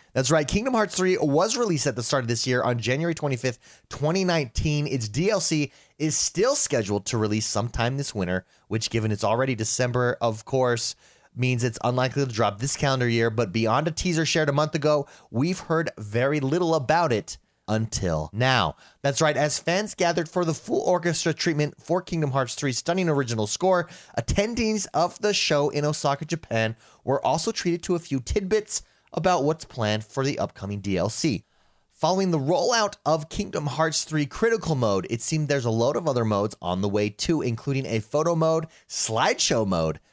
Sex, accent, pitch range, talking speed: male, American, 115-165 Hz, 185 wpm